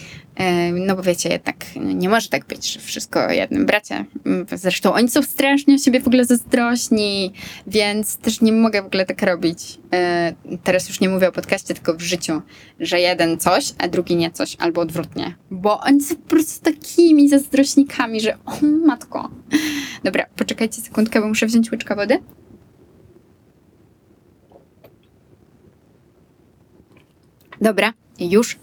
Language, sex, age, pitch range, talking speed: Polish, female, 20-39, 180-245 Hz, 140 wpm